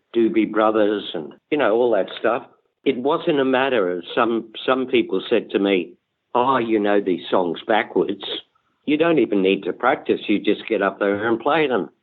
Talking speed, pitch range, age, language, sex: 195 wpm, 100-125 Hz, 60-79, English, male